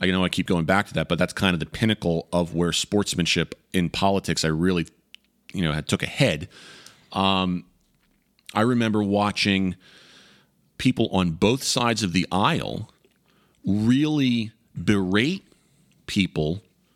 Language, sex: English, male